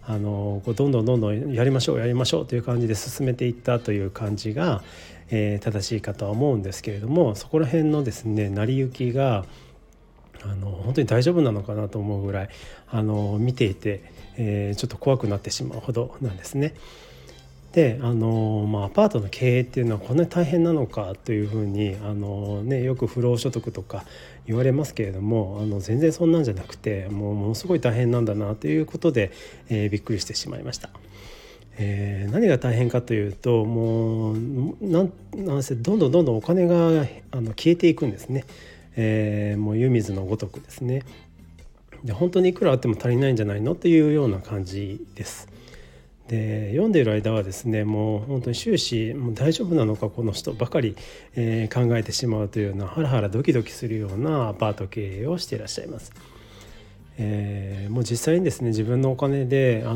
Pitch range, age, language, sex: 105-130 Hz, 40-59, Japanese, male